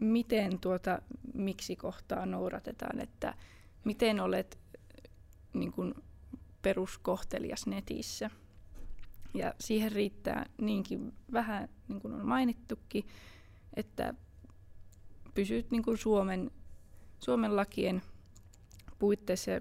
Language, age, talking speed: Finnish, 20-39, 85 wpm